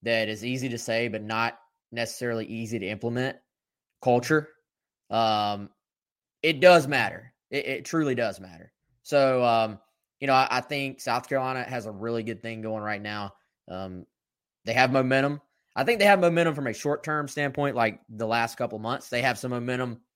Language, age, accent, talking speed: English, 20-39, American, 180 wpm